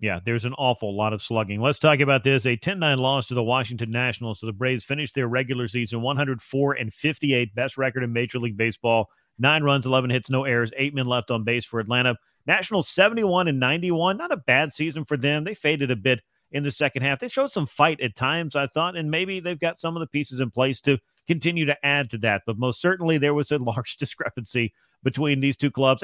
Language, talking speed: English, 230 wpm